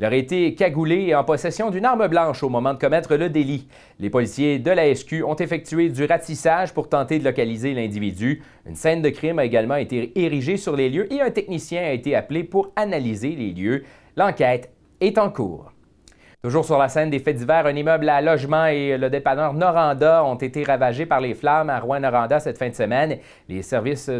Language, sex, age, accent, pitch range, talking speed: French, male, 30-49, Canadian, 125-170 Hz, 210 wpm